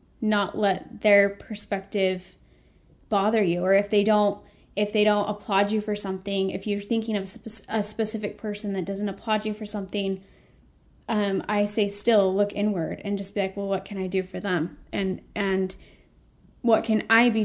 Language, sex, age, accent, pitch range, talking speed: English, female, 20-39, American, 200-230 Hz, 180 wpm